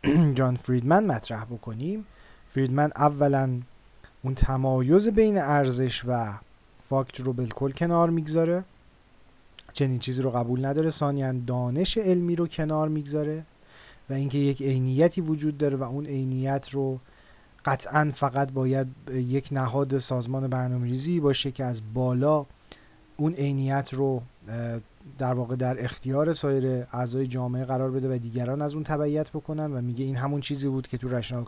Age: 30-49